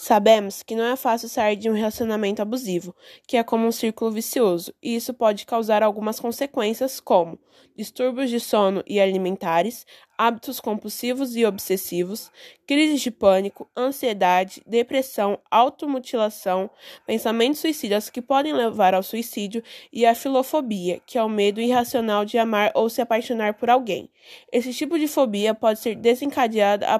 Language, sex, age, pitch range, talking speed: Portuguese, female, 20-39, 210-255 Hz, 150 wpm